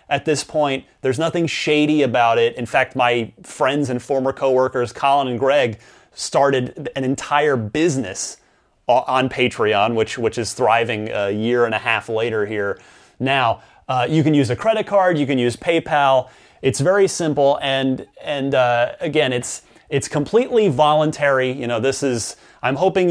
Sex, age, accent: male, 30-49, American